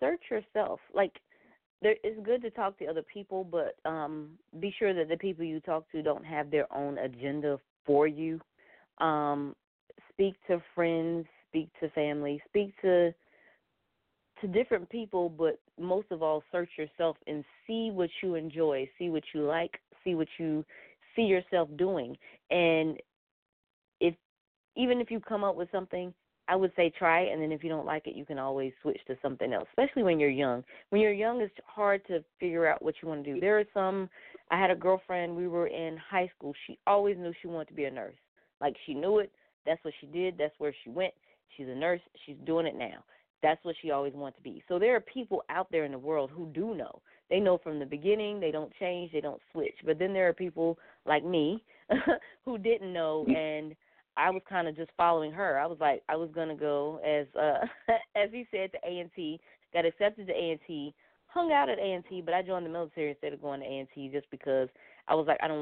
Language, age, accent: English, 30-49, American